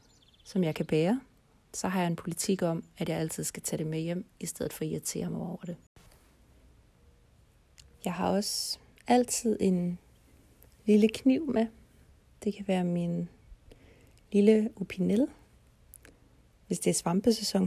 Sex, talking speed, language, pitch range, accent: female, 150 wpm, Danish, 165-195 Hz, native